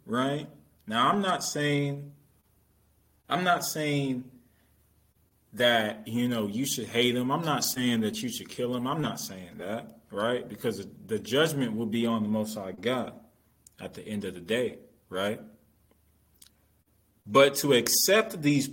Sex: male